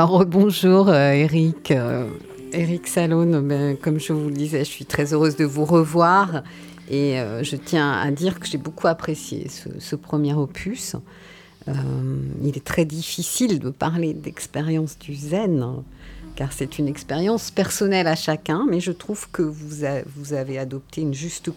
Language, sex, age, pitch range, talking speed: French, female, 50-69, 140-185 Hz, 165 wpm